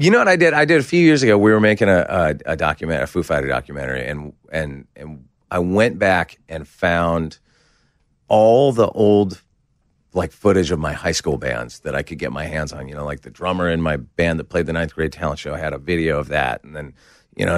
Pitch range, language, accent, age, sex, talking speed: 80-105 Hz, English, American, 30-49, male, 245 wpm